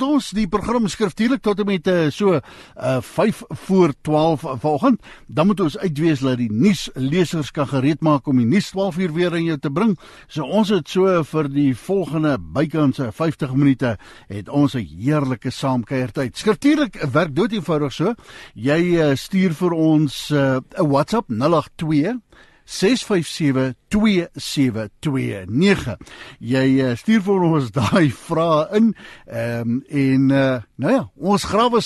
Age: 60-79